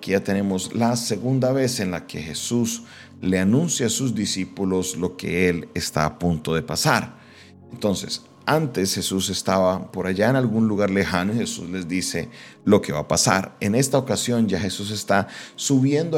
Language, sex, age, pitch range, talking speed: Spanish, male, 40-59, 95-125 Hz, 180 wpm